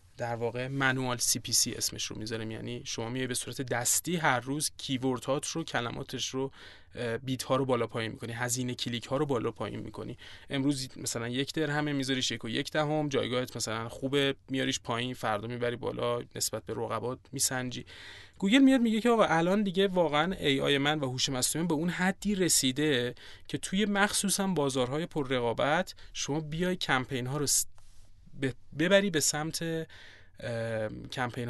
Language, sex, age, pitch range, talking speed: Persian, male, 30-49, 120-155 Hz, 165 wpm